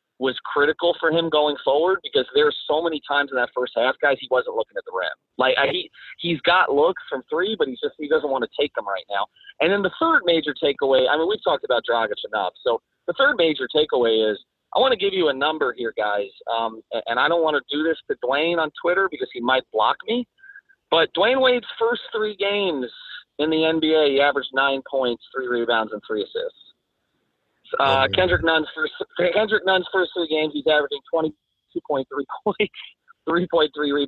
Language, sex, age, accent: English, male, 40-59, American